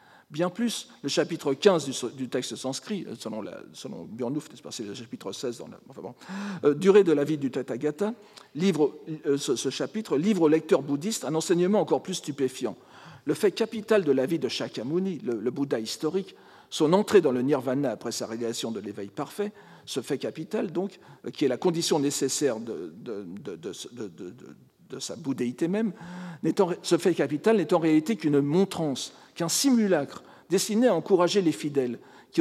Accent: French